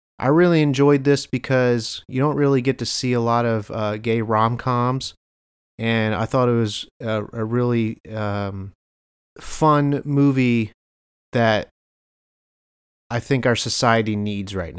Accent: American